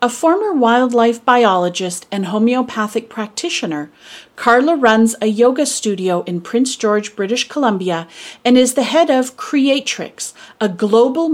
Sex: female